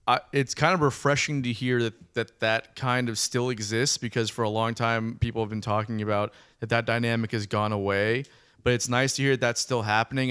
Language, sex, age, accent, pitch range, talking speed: English, male, 20-39, American, 110-130 Hz, 220 wpm